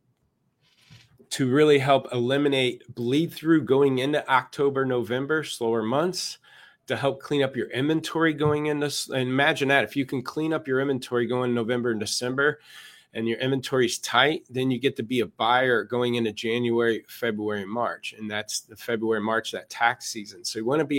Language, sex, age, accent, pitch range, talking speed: English, male, 30-49, American, 110-135 Hz, 190 wpm